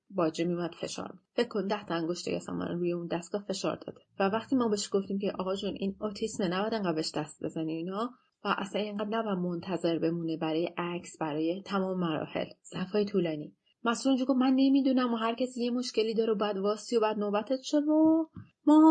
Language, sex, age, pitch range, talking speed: Persian, female, 30-49, 180-225 Hz, 195 wpm